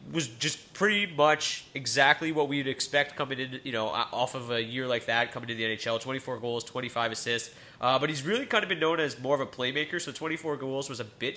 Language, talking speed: English, 240 wpm